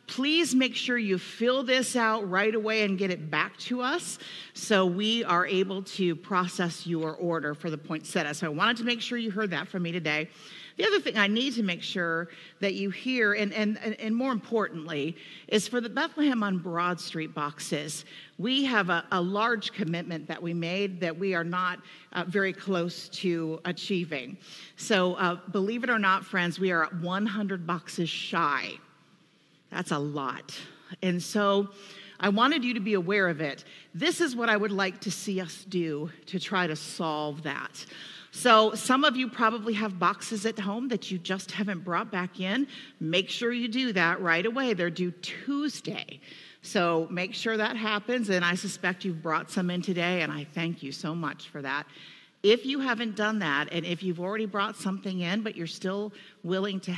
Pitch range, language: 170-215 Hz, English